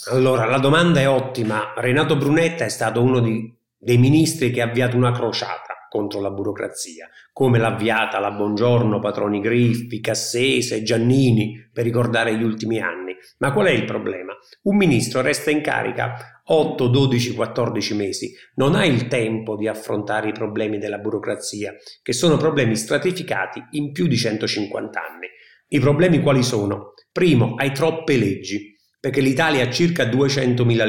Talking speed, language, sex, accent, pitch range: 155 wpm, Italian, male, native, 115-145 Hz